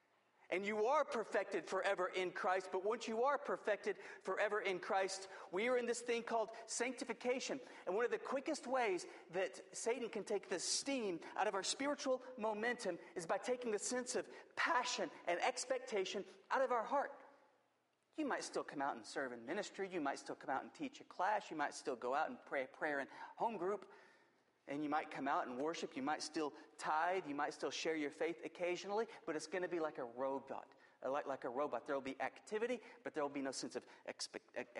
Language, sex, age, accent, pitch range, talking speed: English, male, 40-59, American, 175-260 Hz, 210 wpm